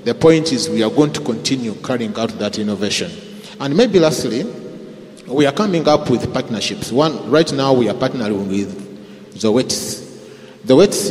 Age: 30-49